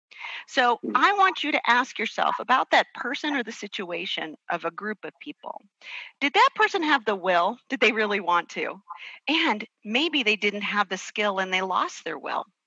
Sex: female